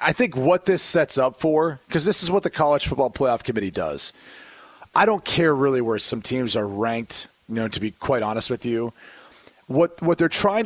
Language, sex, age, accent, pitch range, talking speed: English, male, 30-49, American, 125-160 Hz, 215 wpm